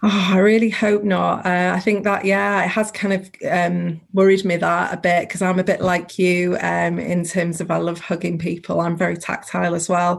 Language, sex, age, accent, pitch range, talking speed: English, female, 30-49, British, 175-195 Hz, 230 wpm